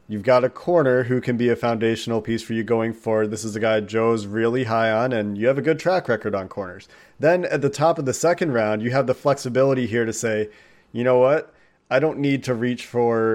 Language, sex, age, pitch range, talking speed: English, male, 30-49, 115-135 Hz, 245 wpm